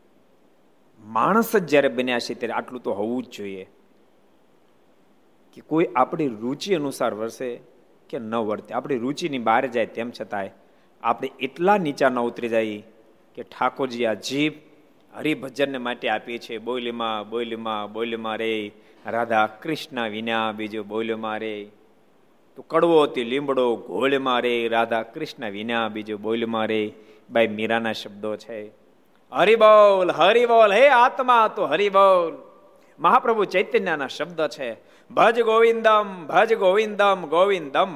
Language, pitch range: Gujarati, 115-180 Hz